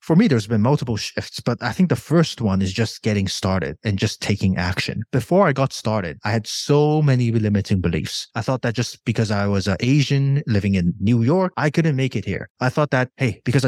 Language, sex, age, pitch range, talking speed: English, male, 20-39, 110-145 Hz, 230 wpm